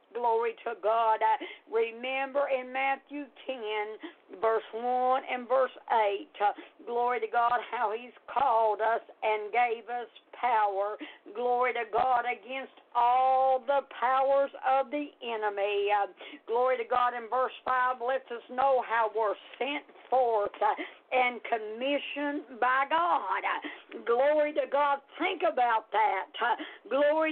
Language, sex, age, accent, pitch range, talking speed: English, female, 60-79, American, 240-295 Hz, 125 wpm